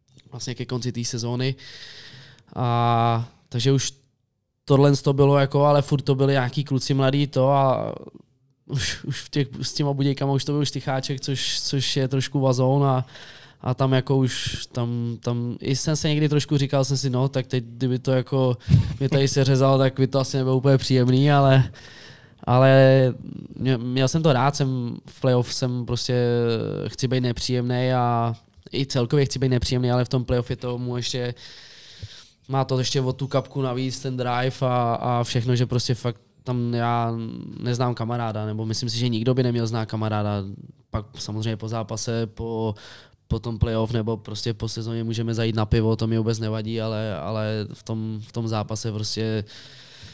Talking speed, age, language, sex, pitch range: 180 wpm, 20-39, Czech, male, 115-135 Hz